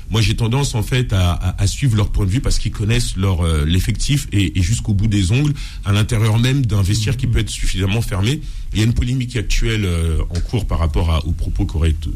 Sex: male